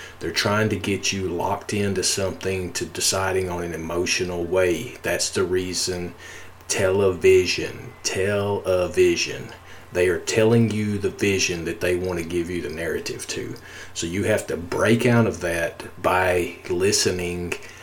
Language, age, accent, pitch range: English, 40-59, American, 90-110 Hz